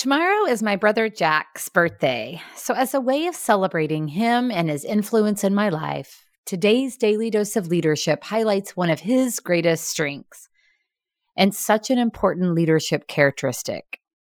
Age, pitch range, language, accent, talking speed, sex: 30-49, 155-215 Hz, English, American, 150 wpm, female